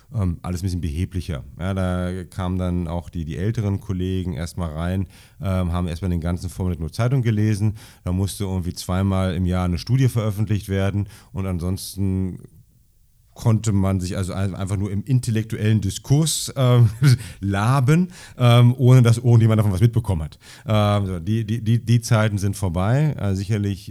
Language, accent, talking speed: German, German, 170 wpm